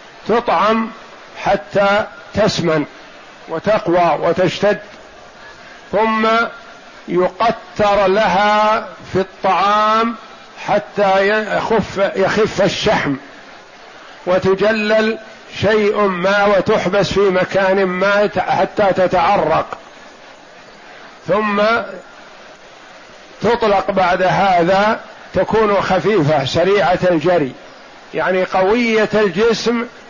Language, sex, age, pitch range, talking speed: Arabic, male, 50-69, 190-215 Hz, 70 wpm